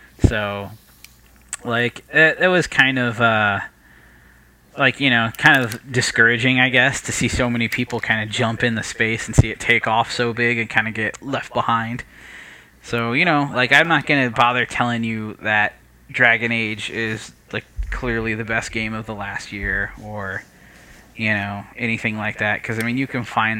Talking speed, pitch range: 195 wpm, 105-125 Hz